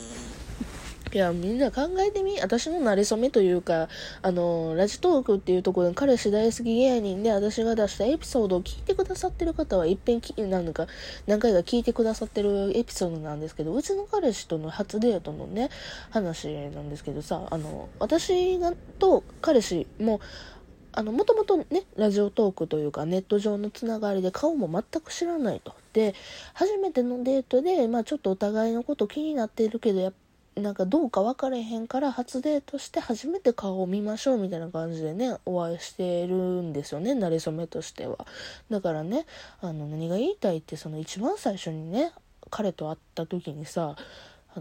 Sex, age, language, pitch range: female, 20-39, Japanese, 175-270 Hz